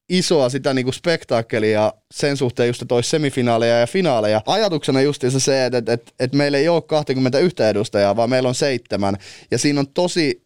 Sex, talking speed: male, 185 wpm